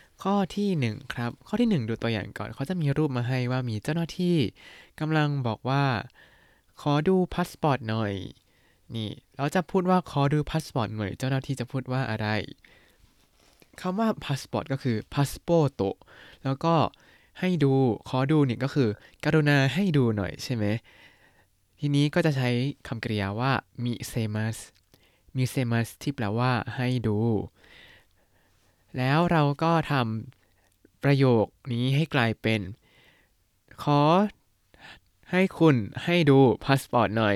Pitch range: 110-145 Hz